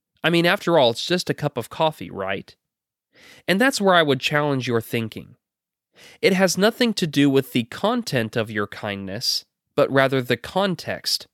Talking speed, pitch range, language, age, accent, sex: 180 wpm, 115-165 Hz, English, 20-39, American, male